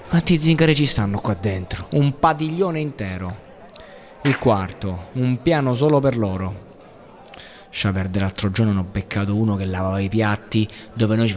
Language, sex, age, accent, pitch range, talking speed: Italian, male, 20-39, native, 105-140 Hz, 165 wpm